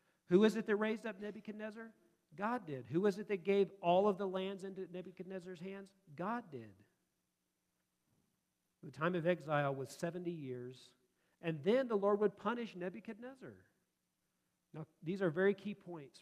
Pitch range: 135-190 Hz